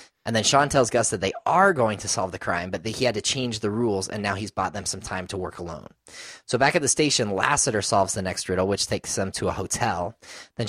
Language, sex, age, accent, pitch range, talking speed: English, male, 20-39, American, 100-125 Hz, 270 wpm